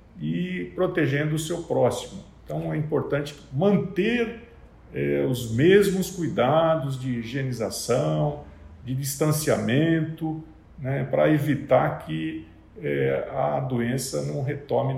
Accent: Brazilian